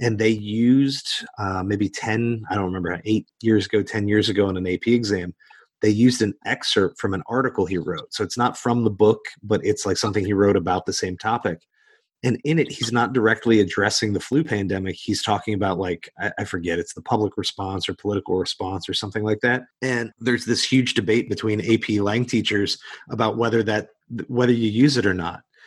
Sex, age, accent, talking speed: male, 30-49, American, 205 wpm